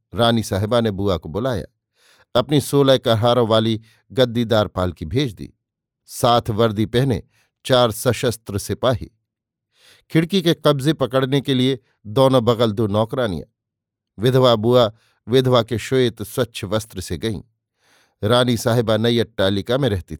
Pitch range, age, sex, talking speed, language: 110-130 Hz, 50-69, male, 135 wpm, Hindi